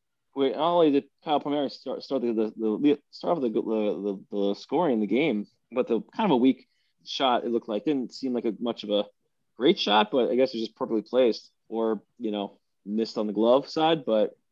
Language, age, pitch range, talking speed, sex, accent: English, 20-39, 105-130 Hz, 235 wpm, male, American